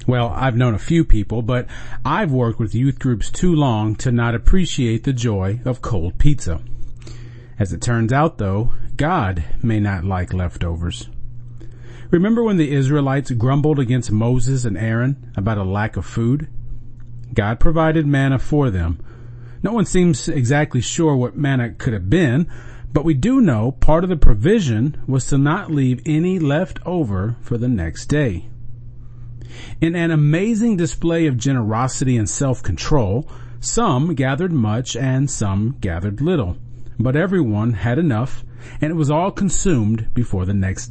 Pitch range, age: 115-140 Hz, 40-59